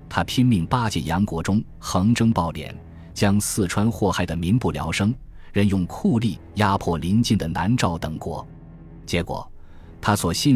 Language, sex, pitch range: Chinese, male, 85-110 Hz